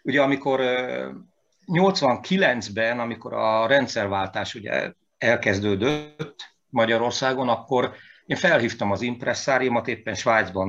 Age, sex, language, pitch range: 50-69, male, Hungarian, 105-135 Hz